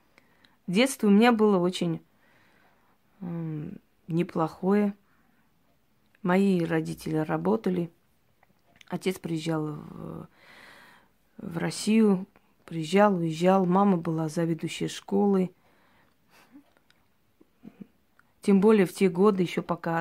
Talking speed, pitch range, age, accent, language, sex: 85 wpm, 165-200 Hz, 20-39, native, Russian, female